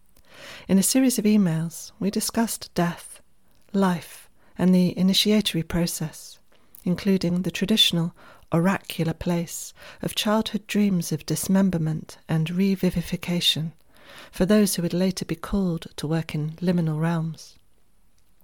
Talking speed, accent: 120 wpm, British